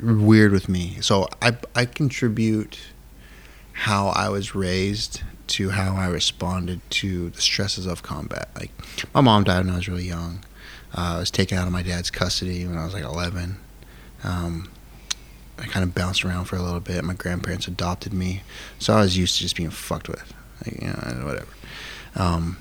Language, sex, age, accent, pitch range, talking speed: English, male, 30-49, American, 90-105 Hz, 190 wpm